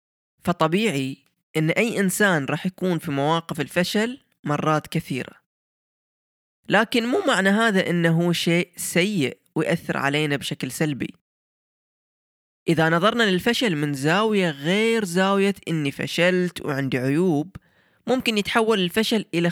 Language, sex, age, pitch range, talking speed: Arabic, female, 20-39, 150-200 Hz, 115 wpm